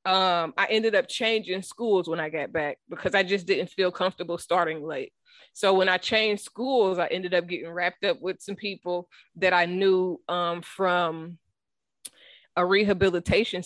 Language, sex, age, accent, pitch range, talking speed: English, female, 20-39, American, 175-205 Hz, 170 wpm